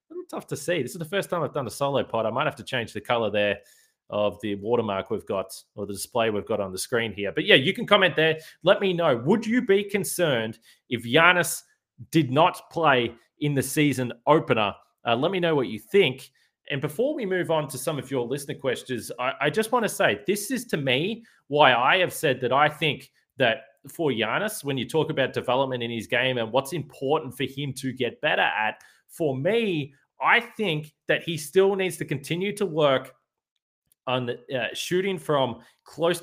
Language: English